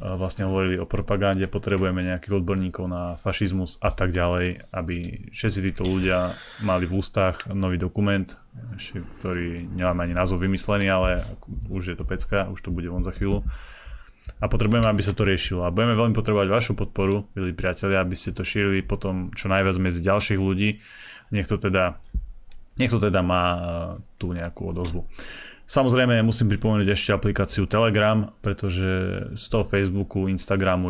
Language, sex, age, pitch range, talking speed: Slovak, male, 20-39, 90-105 Hz, 155 wpm